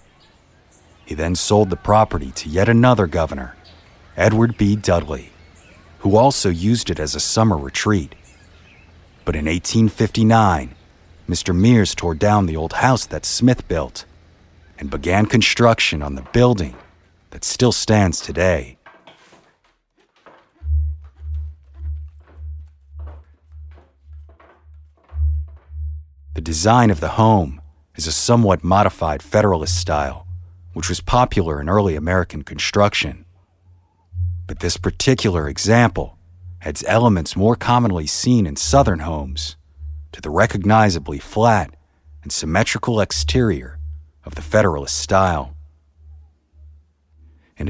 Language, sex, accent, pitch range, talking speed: English, male, American, 75-100 Hz, 105 wpm